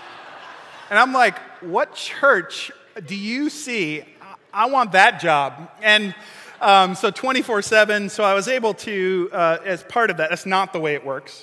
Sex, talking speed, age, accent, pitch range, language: male, 170 wpm, 30-49, American, 140-170 Hz, English